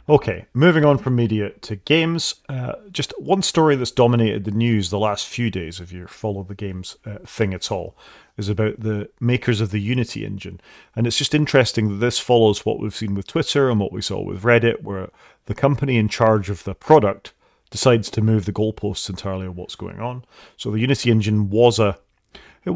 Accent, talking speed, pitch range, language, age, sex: British, 210 wpm, 100-120 Hz, English, 40-59, male